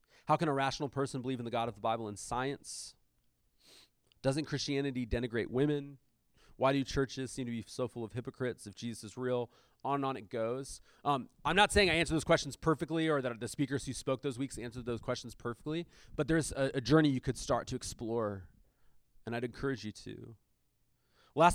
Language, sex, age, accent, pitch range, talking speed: English, male, 30-49, American, 115-145 Hz, 205 wpm